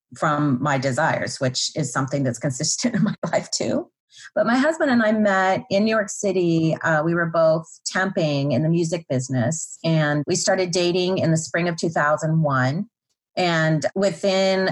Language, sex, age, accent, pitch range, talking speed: English, female, 30-49, American, 150-195 Hz, 170 wpm